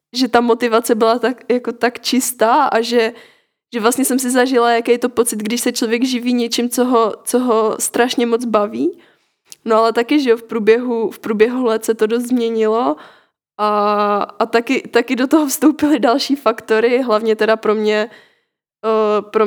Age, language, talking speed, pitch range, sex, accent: 20-39, Czech, 180 wpm, 205-230 Hz, female, native